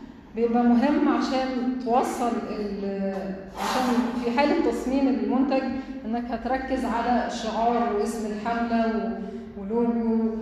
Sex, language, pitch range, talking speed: female, Arabic, 215-245 Hz, 90 wpm